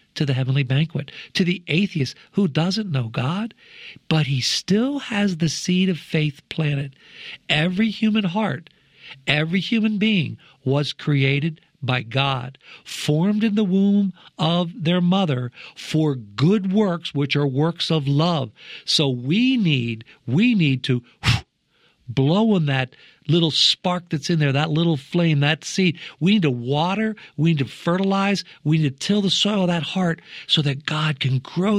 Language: English